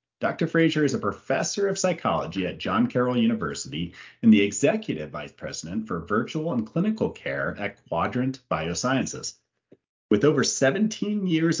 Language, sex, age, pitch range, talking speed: English, male, 40-59, 105-155 Hz, 145 wpm